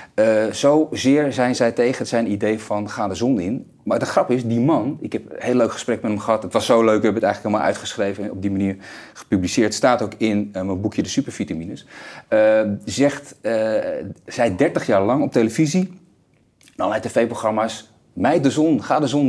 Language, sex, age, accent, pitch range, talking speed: Dutch, male, 30-49, Dutch, 100-130 Hz, 210 wpm